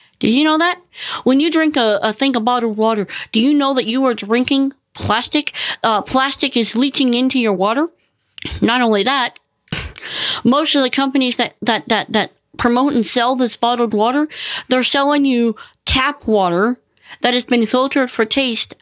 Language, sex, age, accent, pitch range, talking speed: English, female, 40-59, American, 195-260 Hz, 180 wpm